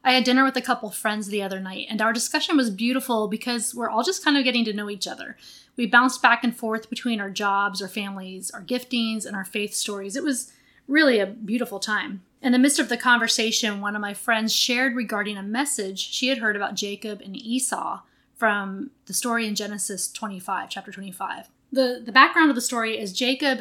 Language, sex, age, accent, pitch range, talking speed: English, female, 20-39, American, 205-255 Hz, 215 wpm